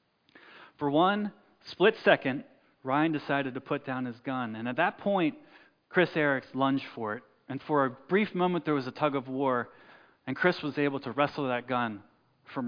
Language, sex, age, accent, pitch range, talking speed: English, male, 30-49, American, 130-170 Hz, 190 wpm